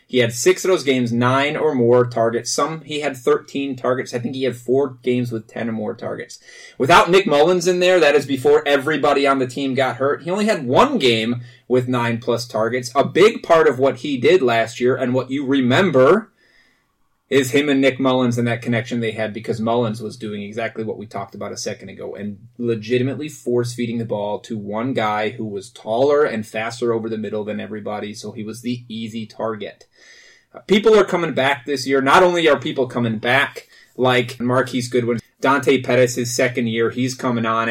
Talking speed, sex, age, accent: 205 wpm, male, 30-49, American